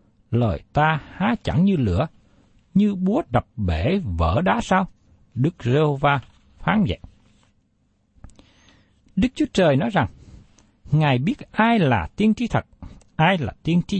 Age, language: 60-79, Vietnamese